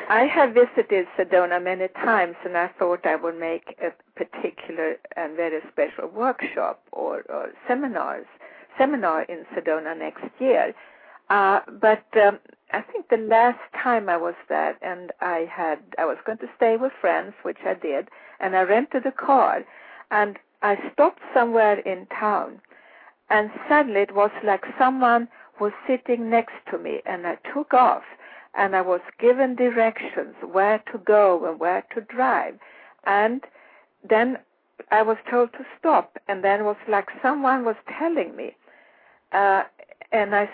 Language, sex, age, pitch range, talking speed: English, female, 60-79, 185-255 Hz, 160 wpm